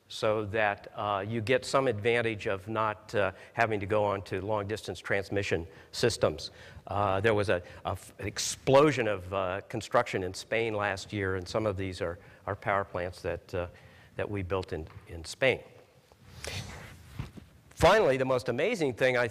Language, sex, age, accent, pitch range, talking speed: English, male, 50-69, American, 100-125 Hz, 170 wpm